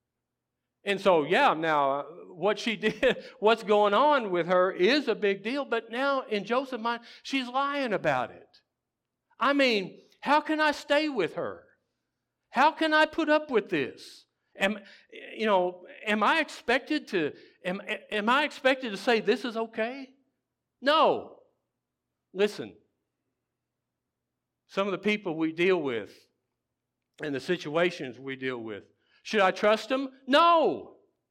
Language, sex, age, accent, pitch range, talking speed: English, male, 60-79, American, 200-285 Hz, 145 wpm